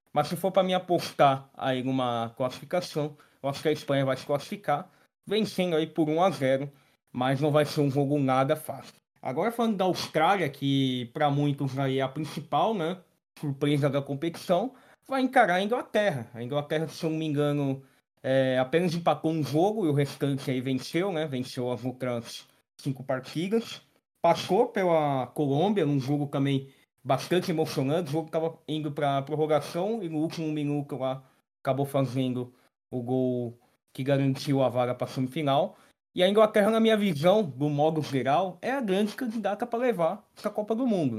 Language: Portuguese